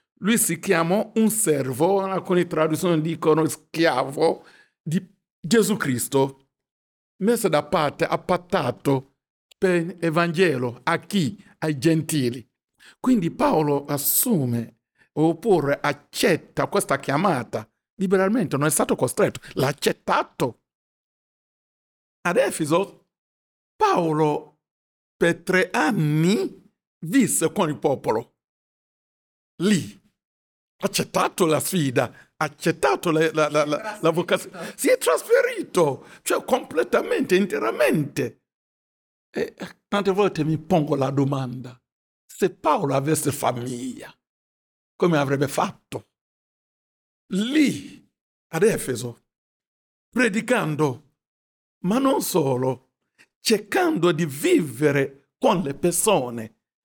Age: 60-79